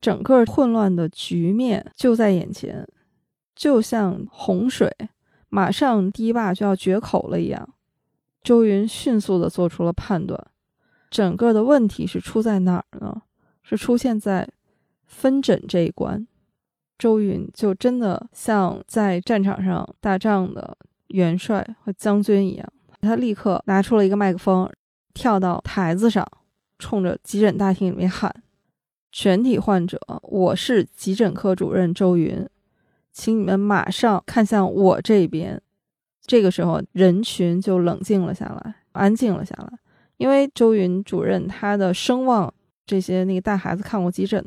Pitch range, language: 185-220 Hz, Chinese